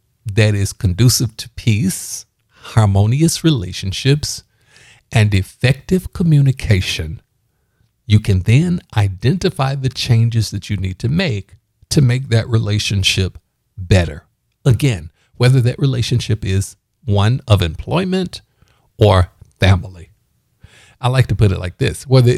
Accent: American